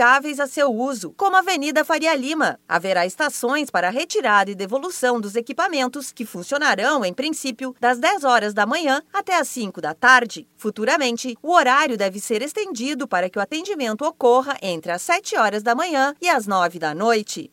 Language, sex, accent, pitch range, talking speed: Portuguese, female, Brazilian, 220-310 Hz, 180 wpm